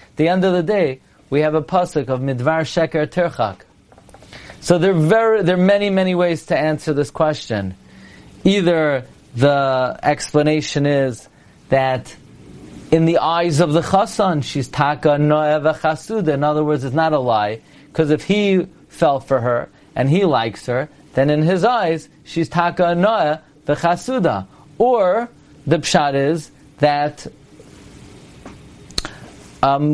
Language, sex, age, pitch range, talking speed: English, male, 40-59, 145-185 Hz, 145 wpm